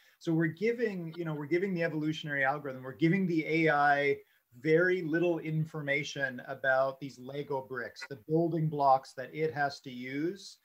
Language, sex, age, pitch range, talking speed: English, male, 30-49, 135-160 Hz, 165 wpm